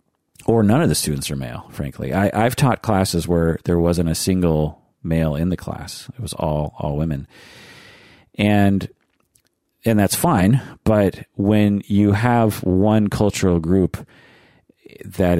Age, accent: 40-59, American